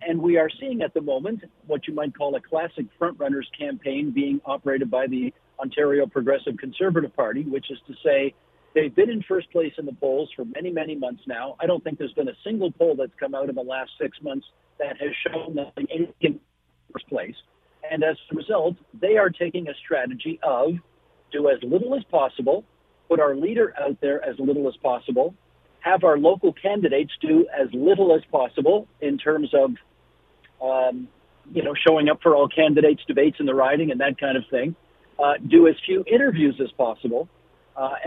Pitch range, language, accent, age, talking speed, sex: 145-200 Hz, English, American, 50-69, 195 wpm, male